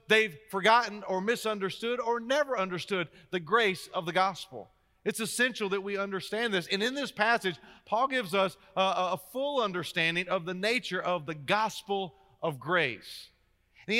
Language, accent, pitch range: English, American, 150-220 Hz